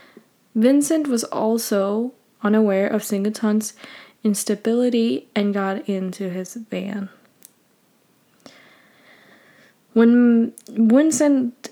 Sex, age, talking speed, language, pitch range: female, 10-29, 70 wpm, English, 205-235 Hz